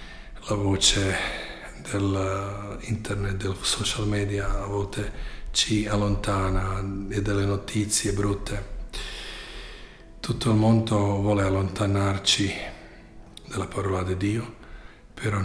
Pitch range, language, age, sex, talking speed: 100-115 Hz, Italian, 40-59, male, 95 wpm